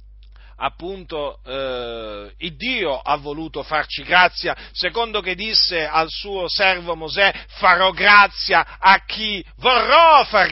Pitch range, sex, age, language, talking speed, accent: 155-235 Hz, male, 40-59, Italian, 120 wpm, native